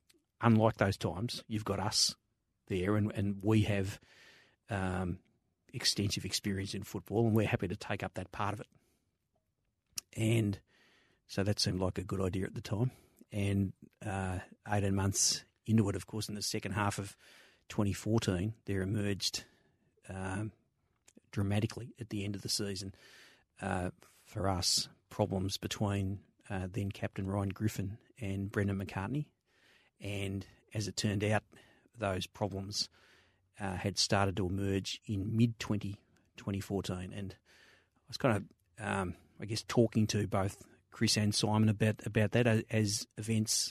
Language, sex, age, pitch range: English, male, 40-59, 100-110 Hz